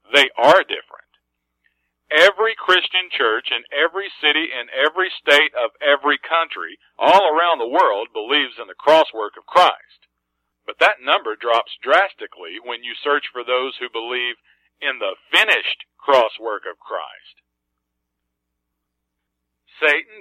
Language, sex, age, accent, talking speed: English, male, 50-69, American, 135 wpm